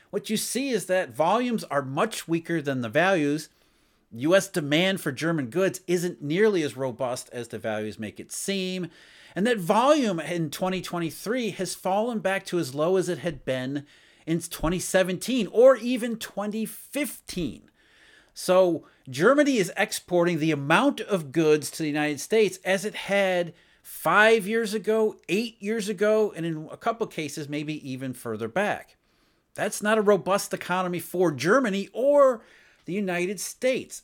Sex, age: male, 40-59